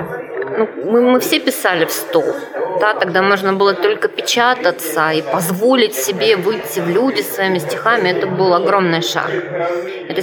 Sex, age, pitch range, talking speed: female, 20-39, 175-255 Hz, 155 wpm